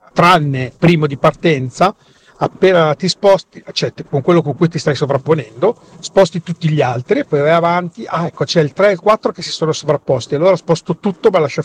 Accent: native